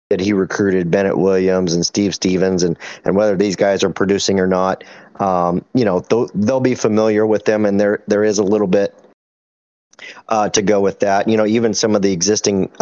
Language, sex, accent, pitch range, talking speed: English, male, American, 95-110 Hz, 210 wpm